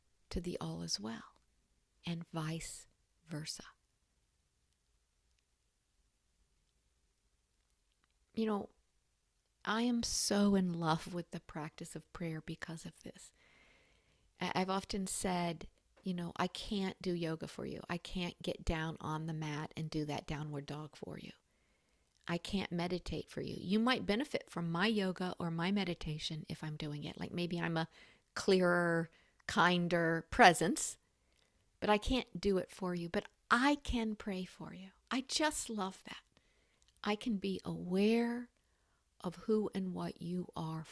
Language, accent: English, American